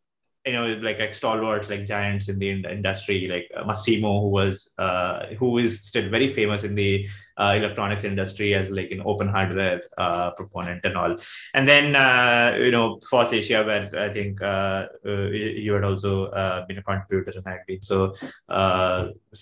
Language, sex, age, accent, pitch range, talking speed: English, male, 20-39, Indian, 100-120 Hz, 180 wpm